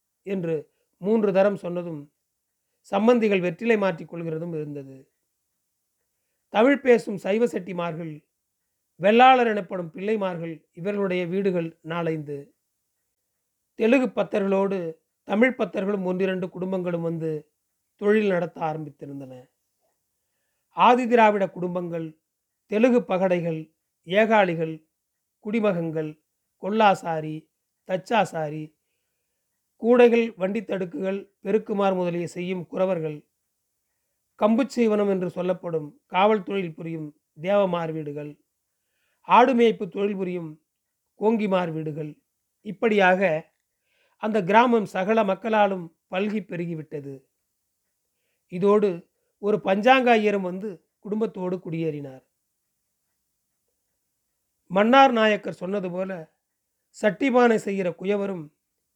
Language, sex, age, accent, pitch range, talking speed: Tamil, male, 40-59, native, 165-210 Hz, 80 wpm